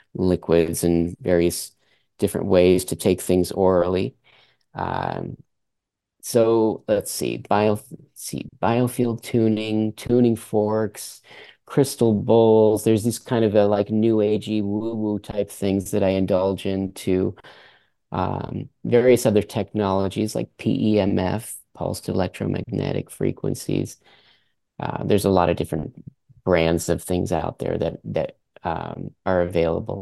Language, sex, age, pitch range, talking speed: English, male, 30-49, 95-110 Hz, 130 wpm